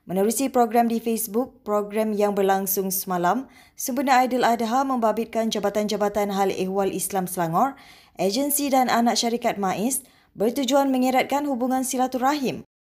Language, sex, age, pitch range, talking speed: Malay, female, 20-39, 205-250 Hz, 120 wpm